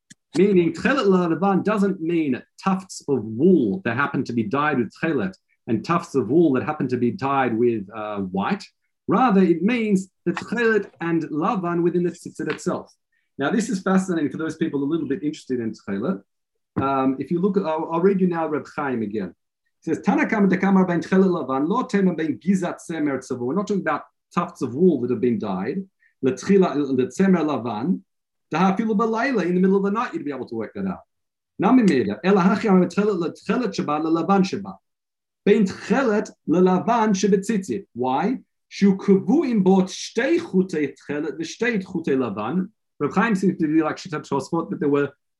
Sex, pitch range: male, 150-200 Hz